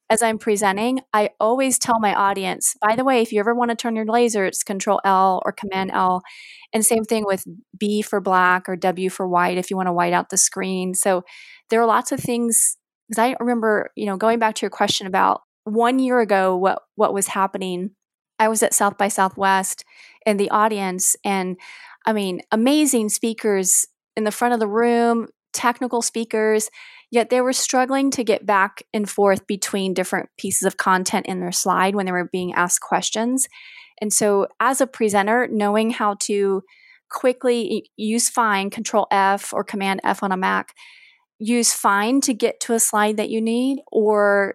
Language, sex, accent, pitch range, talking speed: English, female, American, 195-230 Hz, 195 wpm